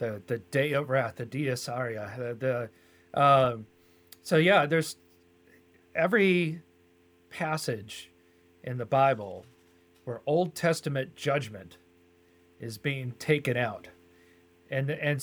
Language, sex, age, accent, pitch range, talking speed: English, male, 40-59, American, 105-145 Hz, 110 wpm